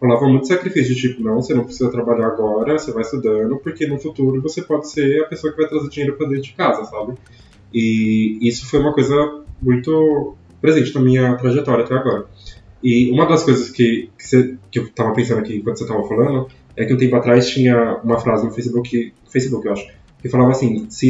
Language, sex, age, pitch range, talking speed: Portuguese, male, 20-39, 115-140 Hz, 215 wpm